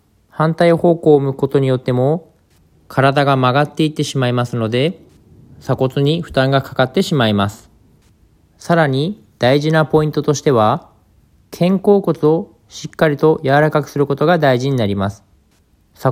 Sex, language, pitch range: male, Japanese, 110-145 Hz